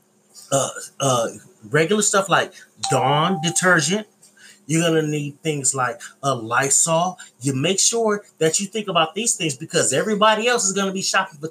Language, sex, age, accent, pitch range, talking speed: English, male, 30-49, American, 150-195 Hz, 170 wpm